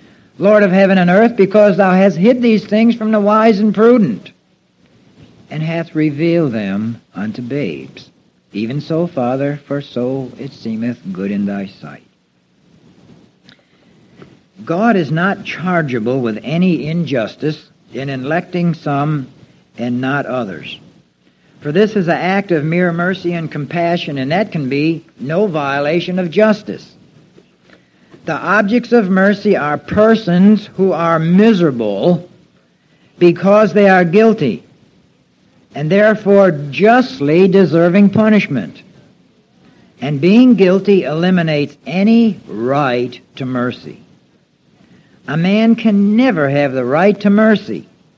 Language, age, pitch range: English, 60-79, 145-200 Hz